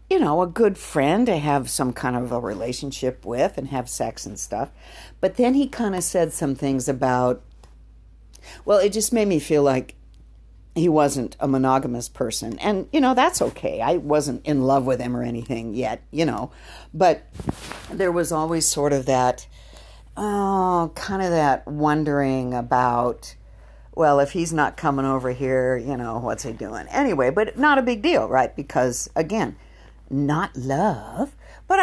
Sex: female